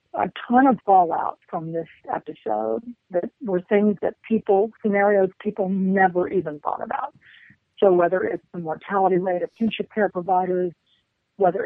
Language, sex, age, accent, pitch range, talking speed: English, female, 50-69, American, 170-205 Hz, 150 wpm